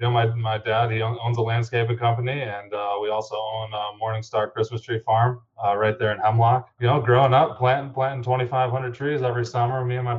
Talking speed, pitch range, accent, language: 225 wpm, 105-120 Hz, American, English